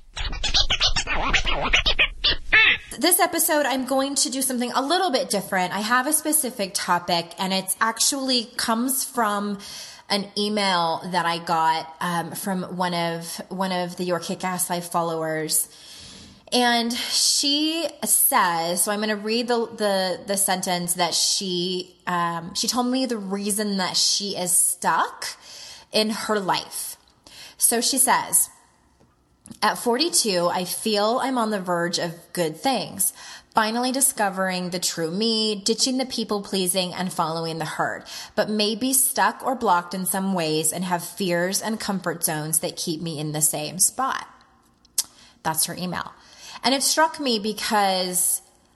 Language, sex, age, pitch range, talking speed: English, female, 20-39, 175-235 Hz, 150 wpm